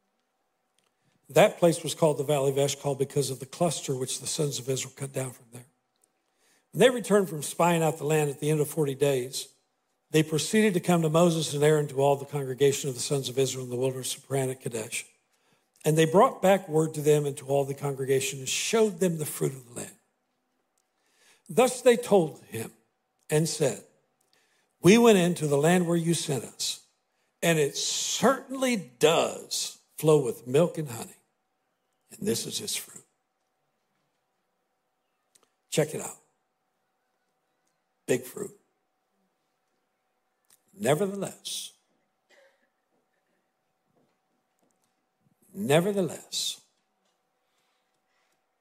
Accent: American